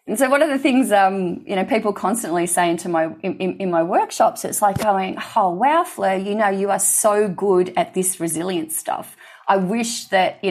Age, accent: 30-49, Australian